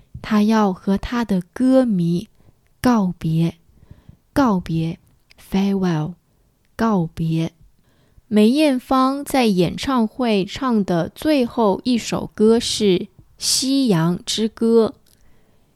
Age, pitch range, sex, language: 20-39, 190-245 Hz, female, English